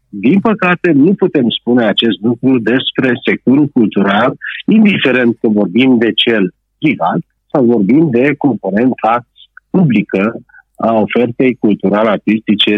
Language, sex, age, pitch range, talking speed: Romanian, male, 50-69, 115-165 Hz, 115 wpm